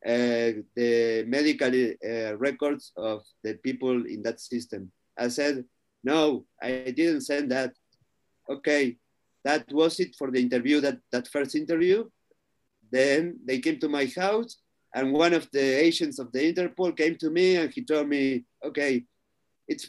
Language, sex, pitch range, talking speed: English, male, 130-175 Hz, 155 wpm